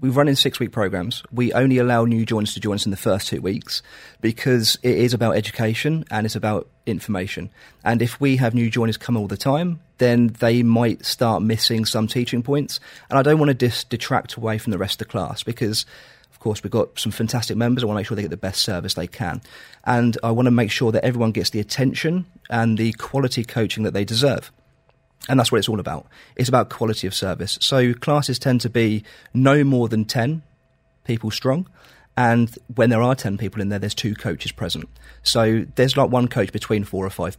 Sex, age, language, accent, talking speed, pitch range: male, 30-49, English, British, 225 wpm, 110-125 Hz